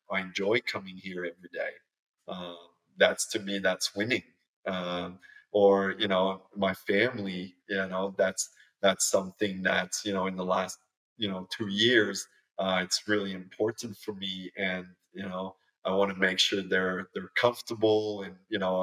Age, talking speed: 30-49, 170 wpm